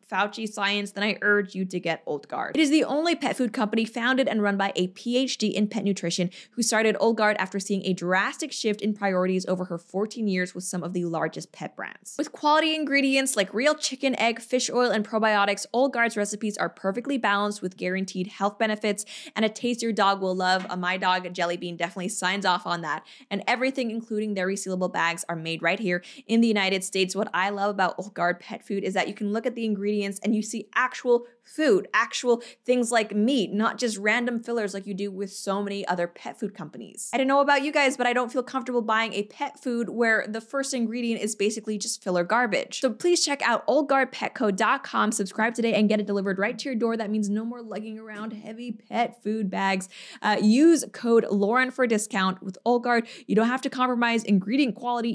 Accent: American